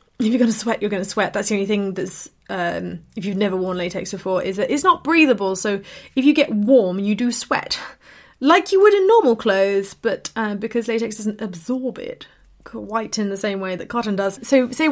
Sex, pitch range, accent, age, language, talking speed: female, 190-235 Hz, British, 20-39, English, 230 wpm